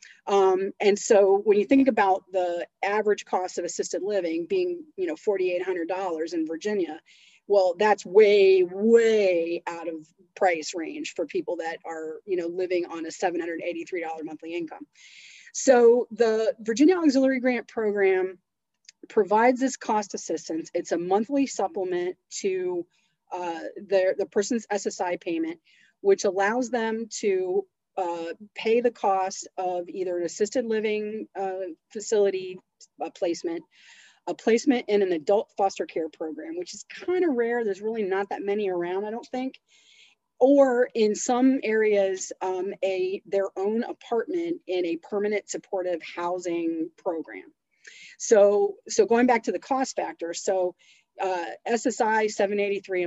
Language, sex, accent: English, female, American